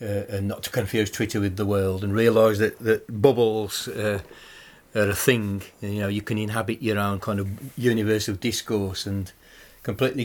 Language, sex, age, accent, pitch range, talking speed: English, male, 40-59, British, 100-115 Hz, 185 wpm